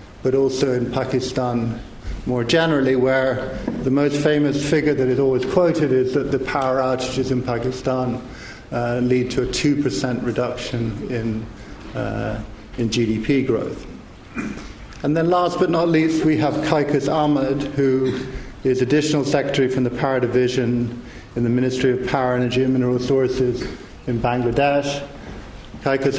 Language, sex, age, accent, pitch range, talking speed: English, male, 50-69, British, 120-140 Hz, 145 wpm